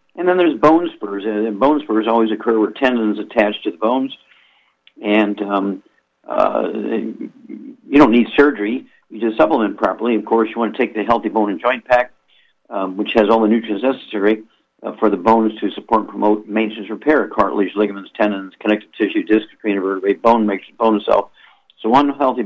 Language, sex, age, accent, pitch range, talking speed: English, male, 50-69, American, 105-120 Hz, 195 wpm